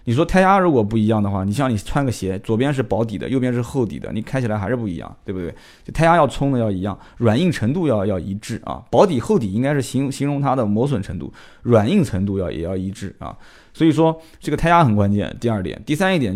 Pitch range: 105-140 Hz